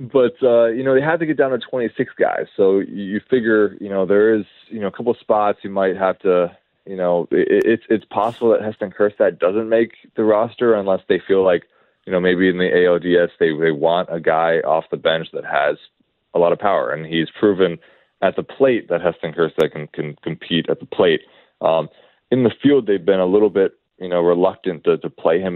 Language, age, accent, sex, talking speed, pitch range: English, 20-39, American, male, 230 wpm, 85-130 Hz